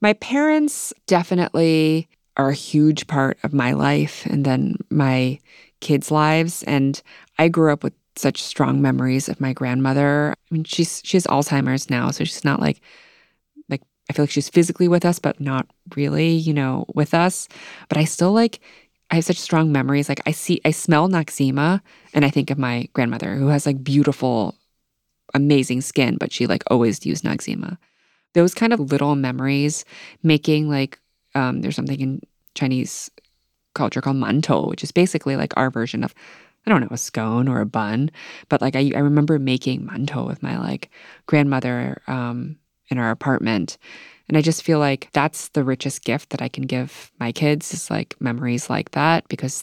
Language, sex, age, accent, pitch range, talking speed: English, female, 20-39, American, 130-160 Hz, 185 wpm